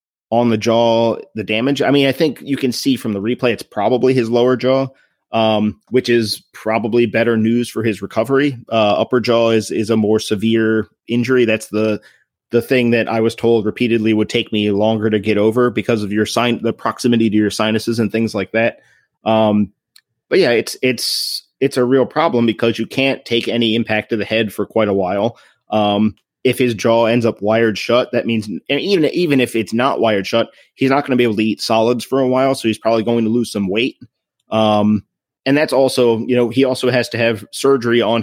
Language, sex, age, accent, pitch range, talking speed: English, male, 30-49, American, 110-125 Hz, 220 wpm